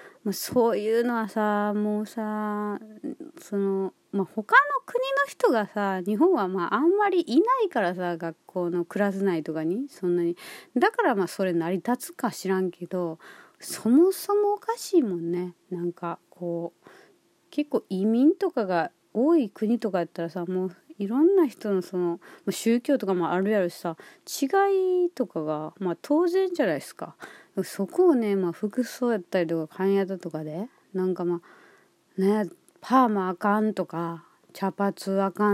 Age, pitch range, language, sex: 30-49, 180-290 Hz, Japanese, female